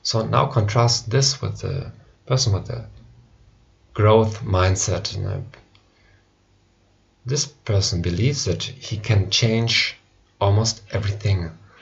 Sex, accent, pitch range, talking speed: male, German, 100-120 Hz, 100 wpm